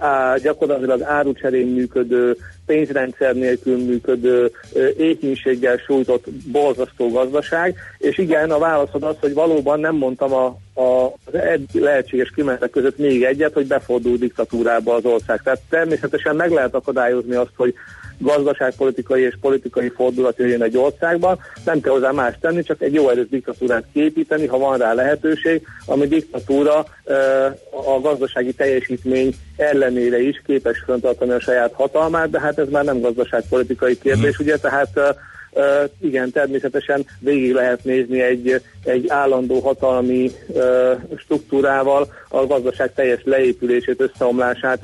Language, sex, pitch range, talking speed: Hungarian, male, 125-140 Hz, 130 wpm